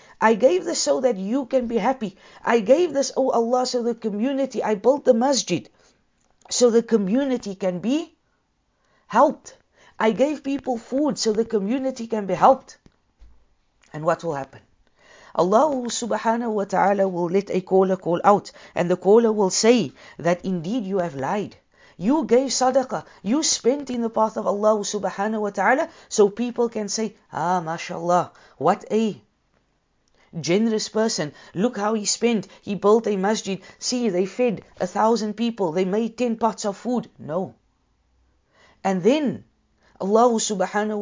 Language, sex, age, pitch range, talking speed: English, female, 50-69, 170-235 Hz, 160 wpm